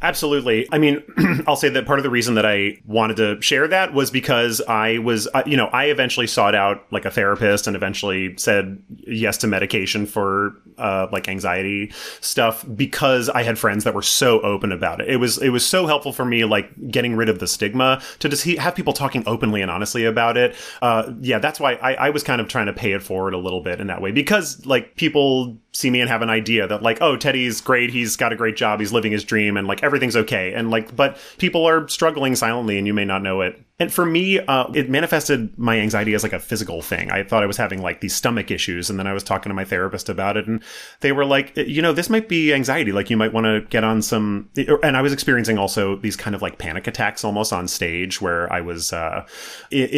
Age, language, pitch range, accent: 30-49, English, 100-130 Hz, American